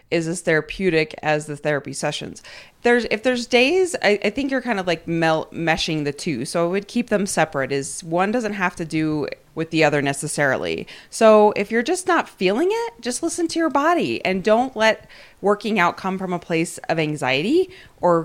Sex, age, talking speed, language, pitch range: female, 30-49, 205 wpm, English, 145-200 Hz